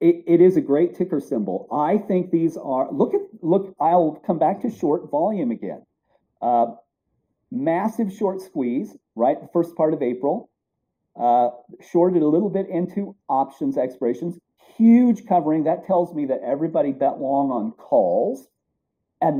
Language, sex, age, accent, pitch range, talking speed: English, male, 50-69, American, 145-230 Hz, 160 wpm